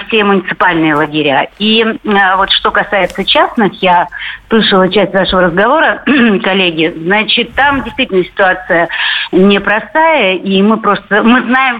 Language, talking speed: Russian, 125 wpm